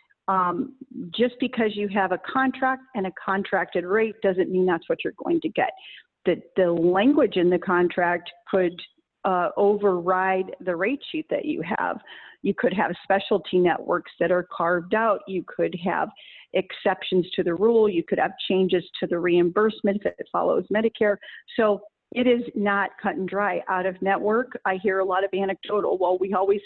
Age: 40-59